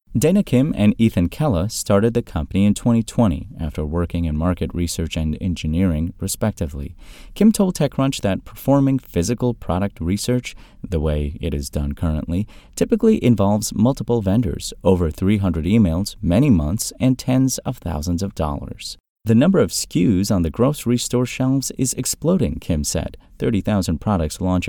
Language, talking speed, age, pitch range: English, 155 wpm, 30-49, 85-120 Hz